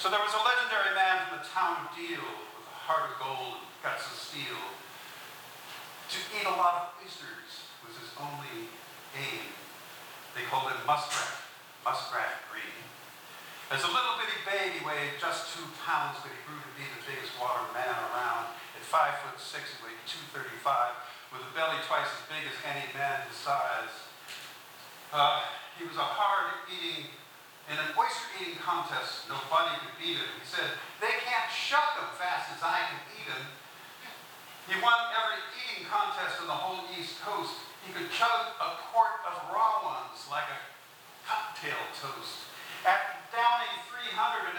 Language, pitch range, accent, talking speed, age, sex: English, 175-235 Hz, American, 170 wpm, 50-69, male